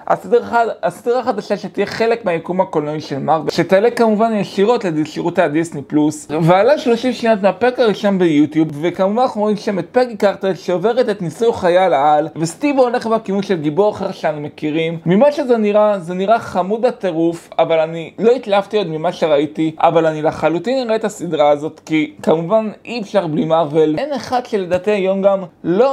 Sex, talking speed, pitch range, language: male, 170 wpm, 165-215 Hz, Hebrew